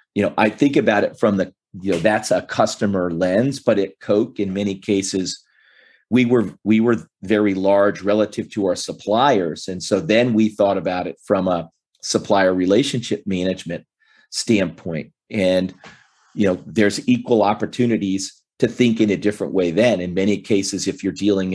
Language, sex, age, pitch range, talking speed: English, male, 40-59, 95-105 Hz, 170 wpm